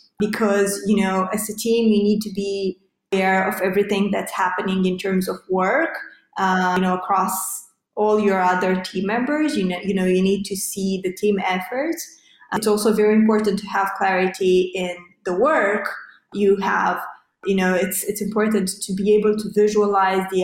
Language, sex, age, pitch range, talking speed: English, female, 20-39, 190-220 Hz, 185 wpm